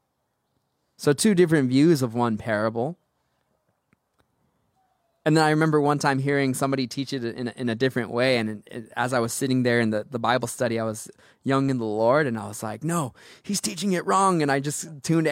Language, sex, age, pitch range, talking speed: English, male, 20-39, 115-145 Hz, 205 wpm